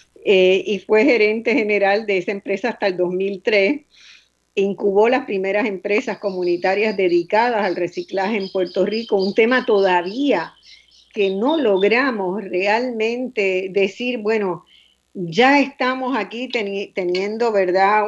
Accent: American